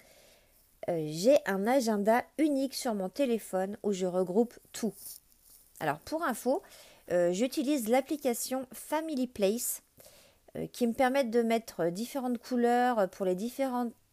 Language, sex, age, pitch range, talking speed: French, female, 40-59, 185-245 Hz, 130 wpm